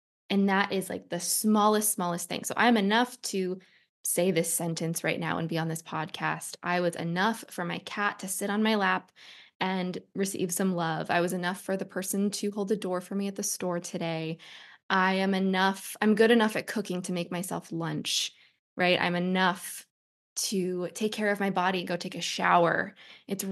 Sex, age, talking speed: female, 20-39, 205 wpm